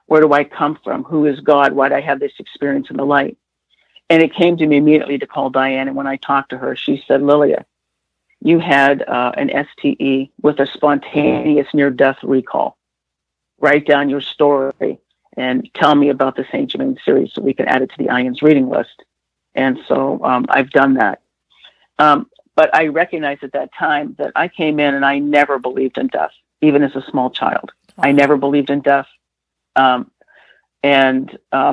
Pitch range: 135-150 Hz